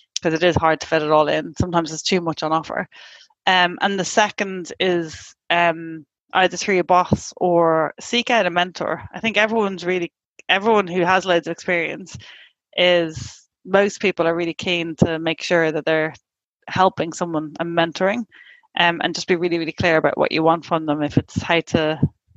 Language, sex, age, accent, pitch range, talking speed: English, female, 30-49, Irish, 165-195 Hz, 195 wpm